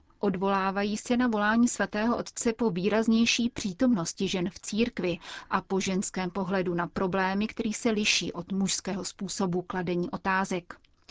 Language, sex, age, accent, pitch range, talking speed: Czech, female, 30-49, native, 185-215 Hz, 140 wpm